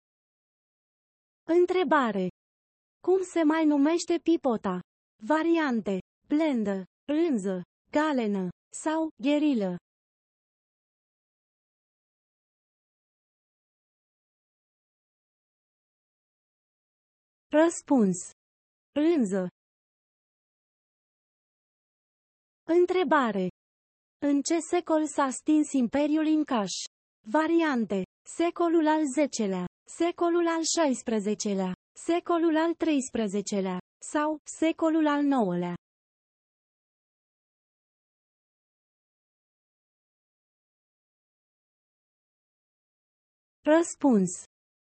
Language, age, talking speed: Romanian, 30-49, 50 wpm